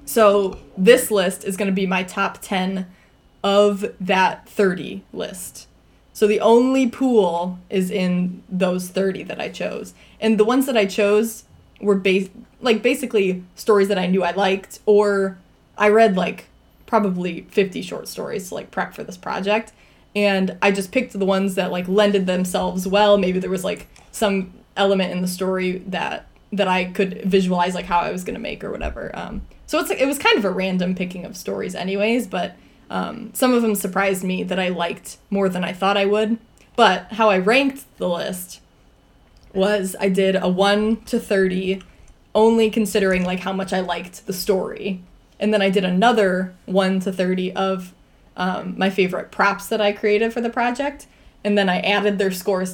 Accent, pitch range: American, 185-210 Hz